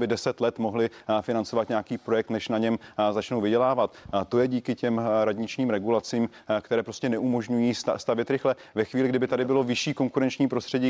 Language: Czech